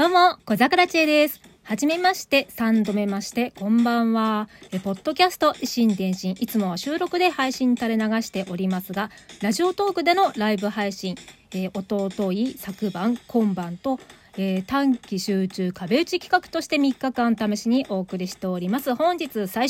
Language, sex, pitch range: Japanese, female, 195-275 Hz